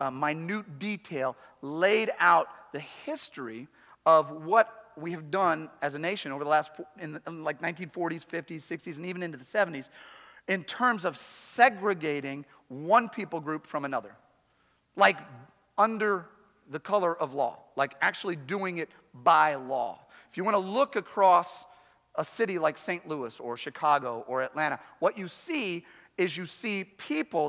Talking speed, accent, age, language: 155 wpm, American, 40-59, English